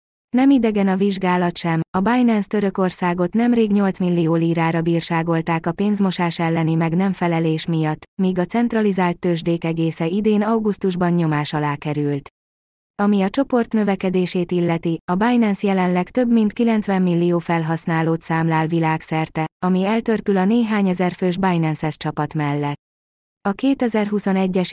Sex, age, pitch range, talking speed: female, 20-39, 165-200 Hz, 135 wpm